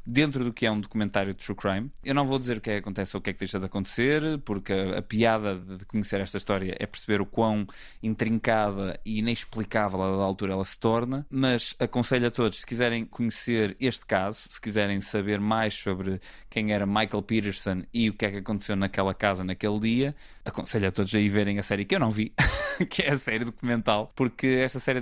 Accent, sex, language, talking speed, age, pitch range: Portuguese, male, Portuguese, 225 wpm, 20-39, 100-115 Hz